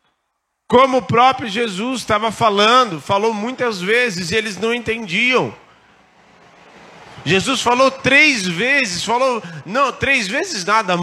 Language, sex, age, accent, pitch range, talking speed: Portuguese, male, 40-59, Brazilian, 170-260 Hz, 120 wpm